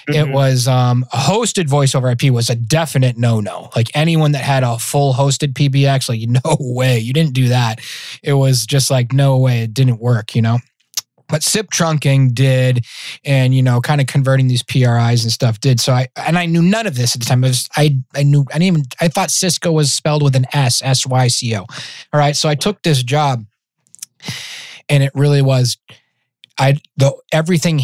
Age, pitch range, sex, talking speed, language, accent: 20-39, 125-155 Hz, male, 210 wpm, English, American